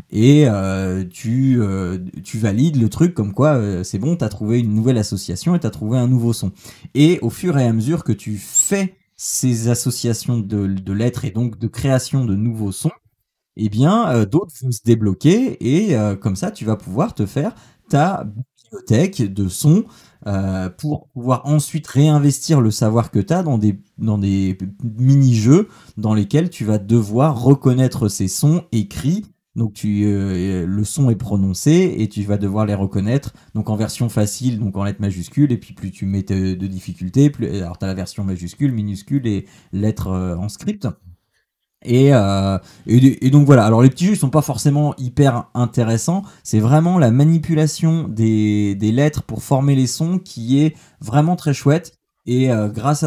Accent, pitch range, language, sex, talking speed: French, 105-145 Hz, French, male, 190 wpm